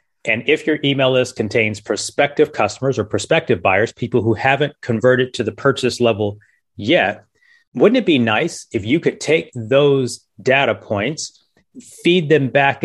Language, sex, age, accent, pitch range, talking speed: English, male, 30-49, American, 115-150 Hz, 160 wpm